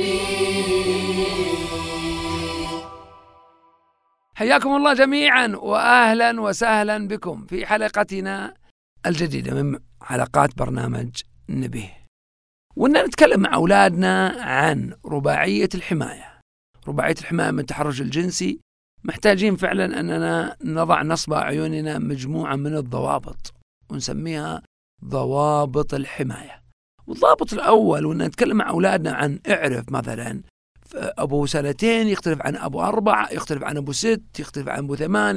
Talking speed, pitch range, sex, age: 100 wpm, 145-200 Hz, male, 50-69